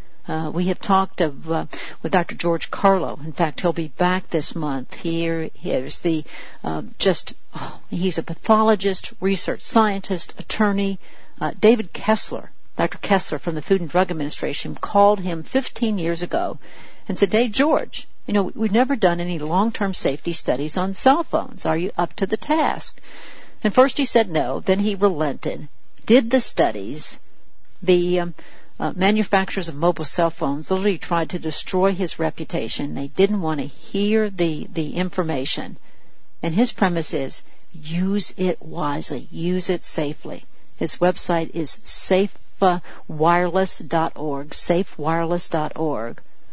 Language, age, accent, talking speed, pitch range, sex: English, 60-79, American, 145 wpm, 160-200 Hz, female